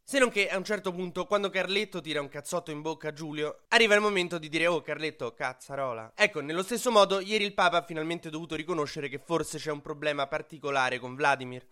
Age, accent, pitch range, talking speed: 20-39, native, 135-180 Hz, 220 wpm